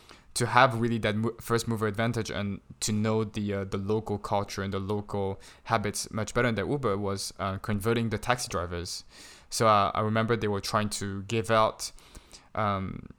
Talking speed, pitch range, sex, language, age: 180 wpm, 100-115 Hz, male, English, 20-39